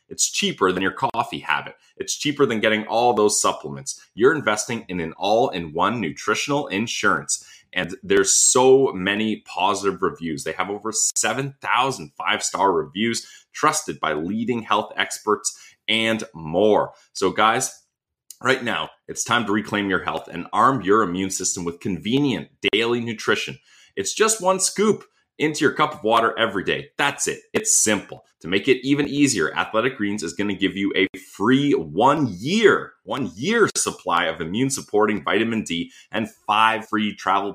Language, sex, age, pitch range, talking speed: English, male, 30-49, 95-135 Hz, 155 wpm